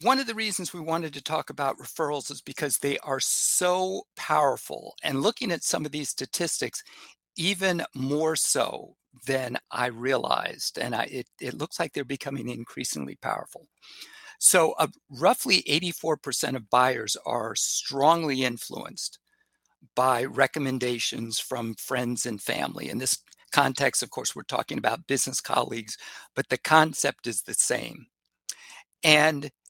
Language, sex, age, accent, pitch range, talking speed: English, male, 50-69, American, 125-175 Hz, 145 wpm